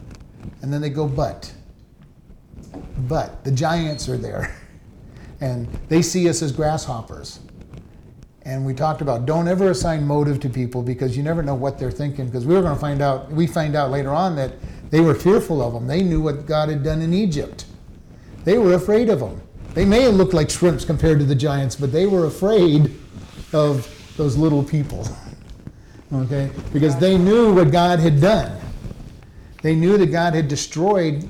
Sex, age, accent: male, 50-69, American